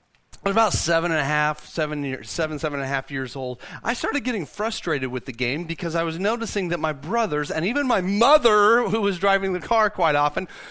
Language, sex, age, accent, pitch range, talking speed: English, male, 40-59, American, 145-210 Hz, 230 wpm